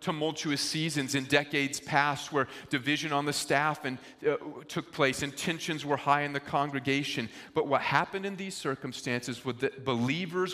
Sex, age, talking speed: male, 40-59, 170 wpm